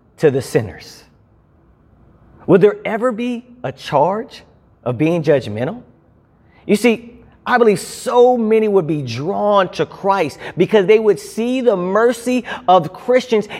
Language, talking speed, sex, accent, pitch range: English, 135 wpm, male, American, 125-210 Hz